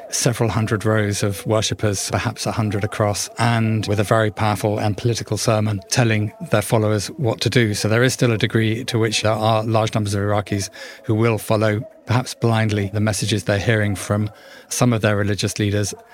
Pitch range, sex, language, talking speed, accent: 105-120 Hz, male, English, 195 wpm, British